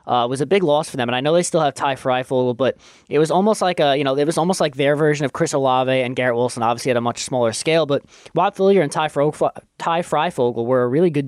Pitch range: 130-150 Hz